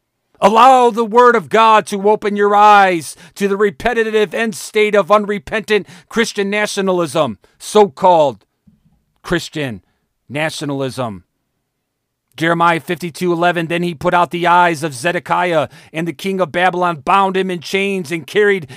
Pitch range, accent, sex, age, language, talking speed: 140-195 Hz, American, male, 40-59, English, 135 wpm